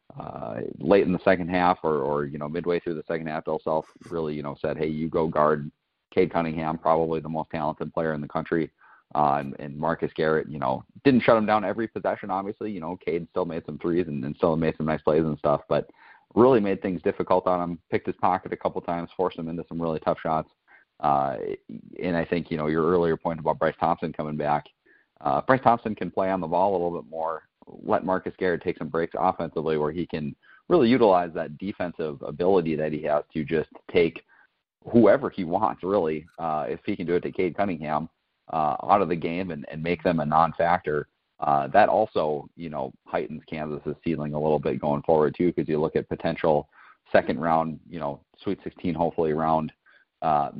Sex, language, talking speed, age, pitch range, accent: male, English, 220 wpm, 30-49, 75-85 Hz, American